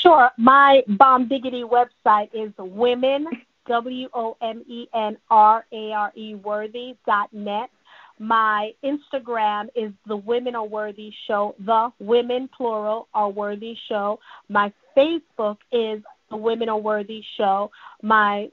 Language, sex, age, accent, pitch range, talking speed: English, female, 30-49, American, 210-245 Hz, 105 wpm